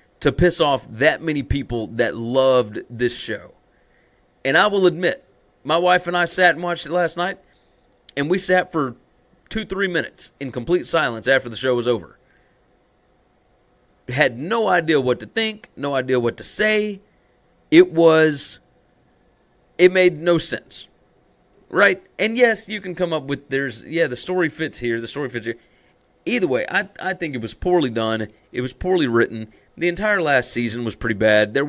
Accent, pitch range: American, 125-170 Hz